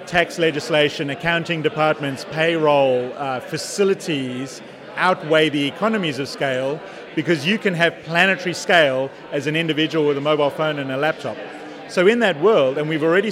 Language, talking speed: English, 160 wpm